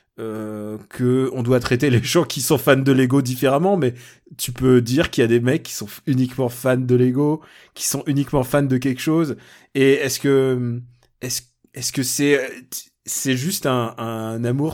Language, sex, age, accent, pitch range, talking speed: French, male, 20-39, French, 125-150 Hz, 200 wpm